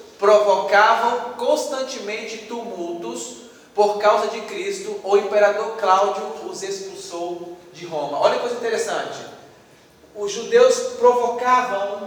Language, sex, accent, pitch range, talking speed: Spanish, male, Brazilian, 205-275 Hz, 105 wpm